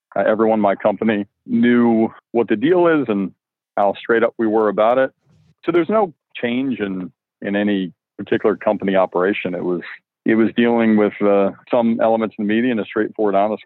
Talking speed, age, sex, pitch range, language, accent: 195 wpm, 40-59, male, 100-115 Hz, English, American